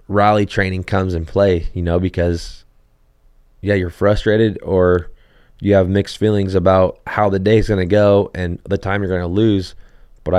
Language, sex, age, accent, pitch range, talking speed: English, male, 20-39, American, 90-105 Hz, 185 wpm